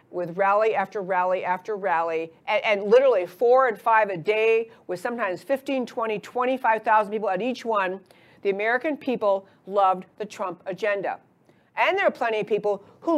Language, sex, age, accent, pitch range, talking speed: English, female, 50-69, American, 190-245 Hz, 170 wpm